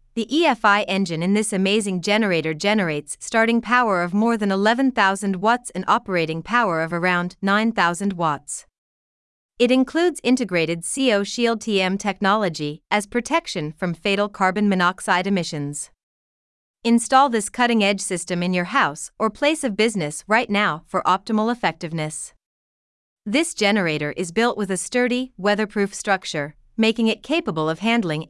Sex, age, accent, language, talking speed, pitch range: female, 30-49, American, English, 140 wpm, 175-230 Hz